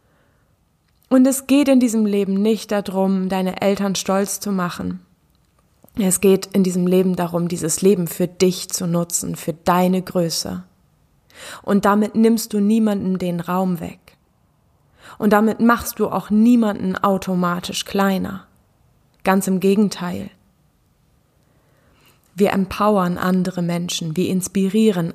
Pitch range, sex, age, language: 180-205 Hz, female, 20-39, German